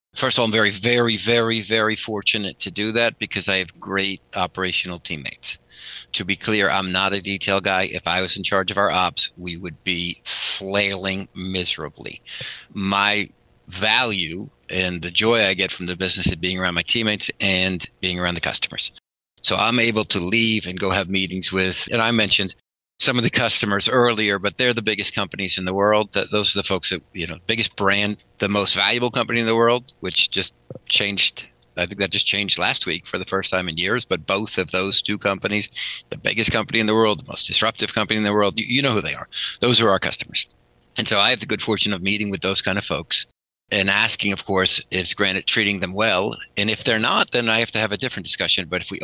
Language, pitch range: English, 95-110 Hz